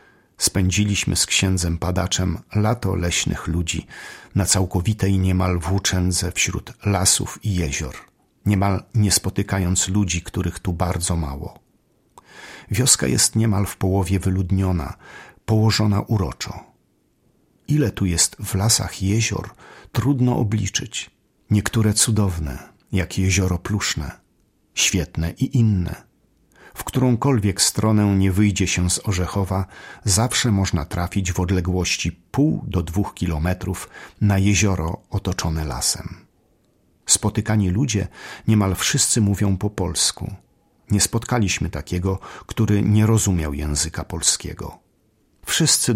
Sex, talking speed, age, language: male, 110 wpm, 50-69, Polish